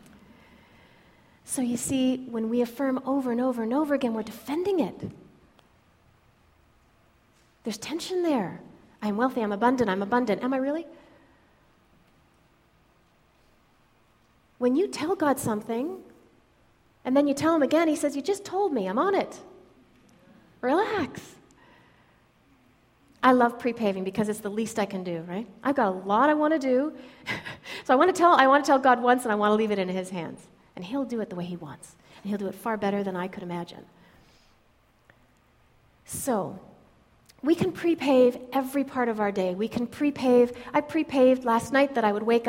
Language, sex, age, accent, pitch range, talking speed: English, female, 30-49, American, 210-270 Hz, 175 wpm